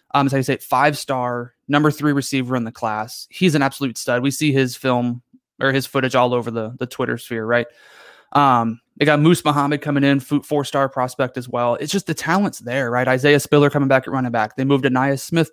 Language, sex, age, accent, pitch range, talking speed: English, male, 20-39, American, 125-145 Hz, 225 wpm